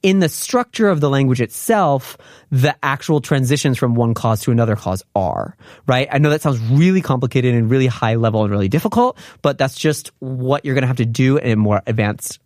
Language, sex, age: Korean, male, 30-49